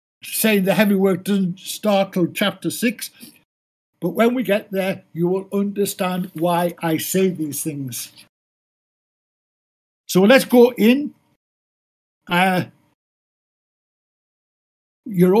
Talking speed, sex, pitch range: 105 wpm, male, 175-225 Hz